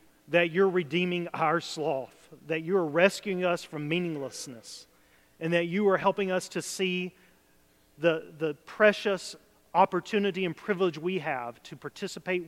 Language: English